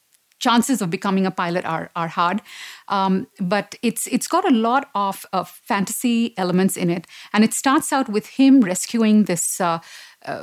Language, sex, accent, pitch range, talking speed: English, female, Indian, 180-225 Hz, 175 wpm